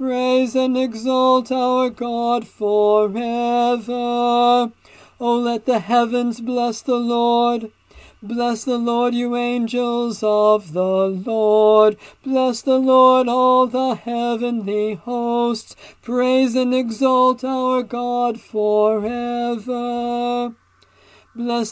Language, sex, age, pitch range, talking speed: English, male, 40-59, 225-255 Hz, 95 wpm